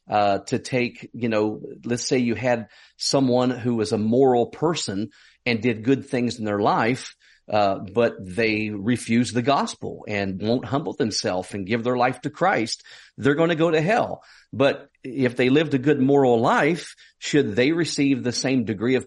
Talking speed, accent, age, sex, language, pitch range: 185 wpm, American, 50-69, male, English, 110-135 Hz